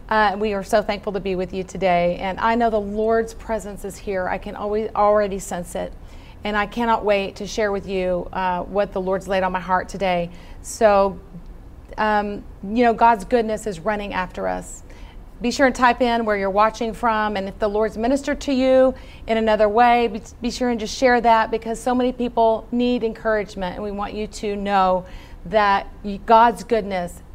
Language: English